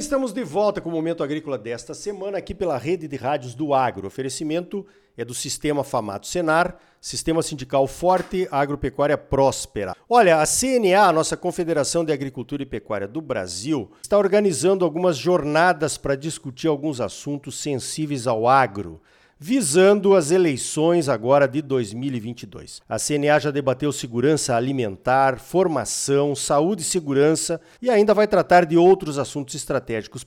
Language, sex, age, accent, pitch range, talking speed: Portuguese, male, 50-69, Brazilian, 140-195 Hz, 150 wpm